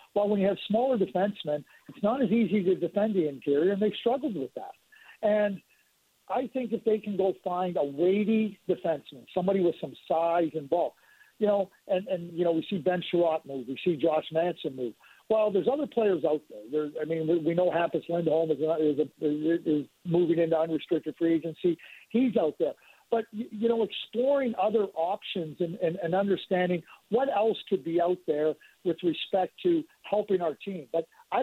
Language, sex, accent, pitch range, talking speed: English, male, American, 165-210 Hz, 195 wpm